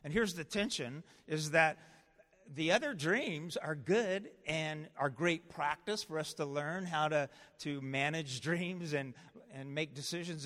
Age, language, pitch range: 50-69, English, 125-160 Hz